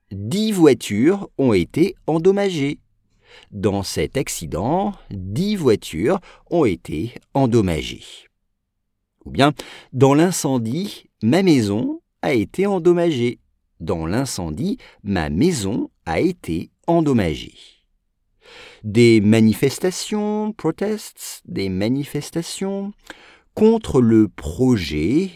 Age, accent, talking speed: 50-69, French, 90 wpm